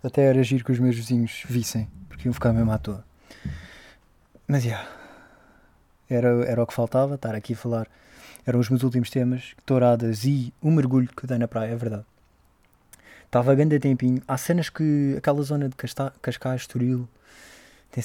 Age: 20-39